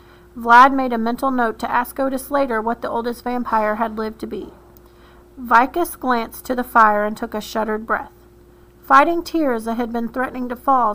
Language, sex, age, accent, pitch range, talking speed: English, female, 40-59, American, 230-275 Hz, 190 wpm